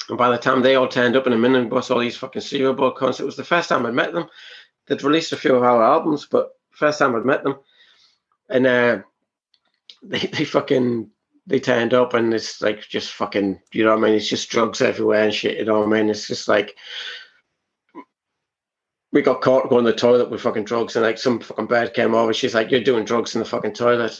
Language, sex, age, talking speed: English, male, 30-49, 240 wpm